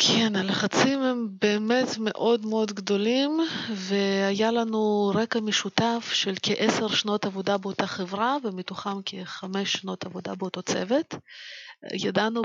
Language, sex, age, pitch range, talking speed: Hebrew, female, 30-49, 195-235 Hz, 115 wpm